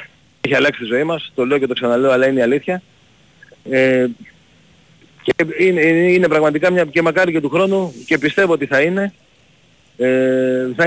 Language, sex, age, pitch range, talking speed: Greek, male, 40-59, 120-160 Hz, 175 wpm